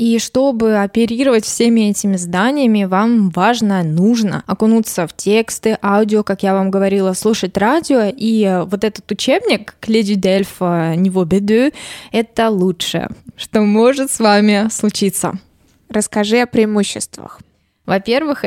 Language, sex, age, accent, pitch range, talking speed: Russian, female, 20-39, native, 190-230 Hz, 125 wpm